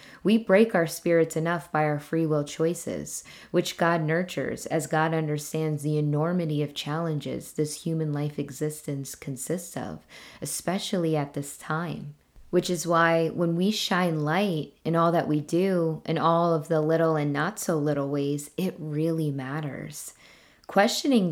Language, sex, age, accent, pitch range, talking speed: English, female, 20-39, American, 150-180 Hz, 160 wpm